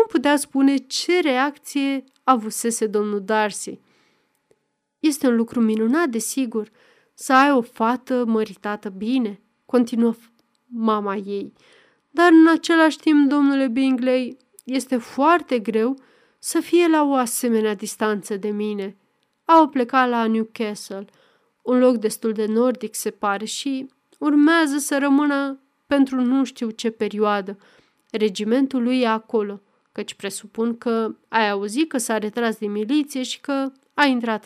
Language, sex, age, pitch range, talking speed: Romanian, female, 30-49, 220-275 Hz, 135 wpm